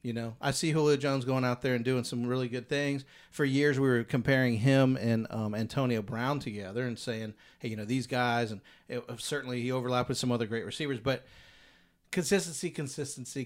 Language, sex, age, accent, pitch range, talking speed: English, male, 40-59, American, 120-155 Hz, 205 wpm